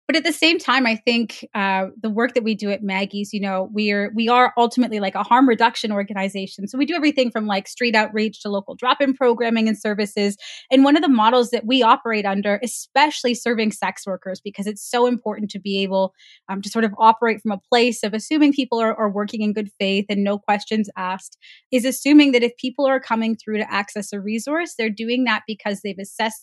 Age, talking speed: 20-39, 230 wpm